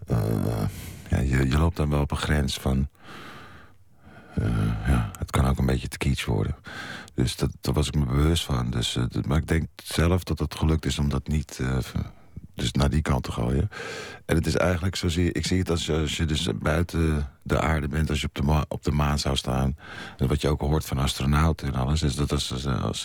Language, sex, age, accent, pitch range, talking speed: Dutch, male, 50-69, Dutch, 70-80 Hz, 230 wpm